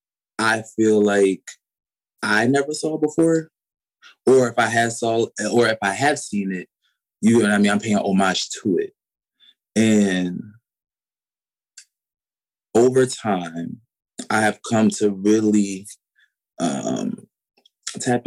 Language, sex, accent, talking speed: English, male, American, 130 wpm